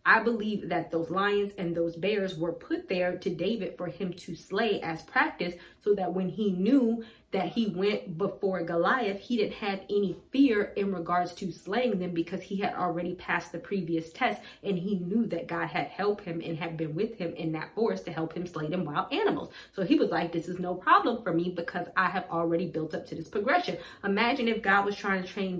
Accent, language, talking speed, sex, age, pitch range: American, English, 225 wpm, female, 30-49, 175-210 Hz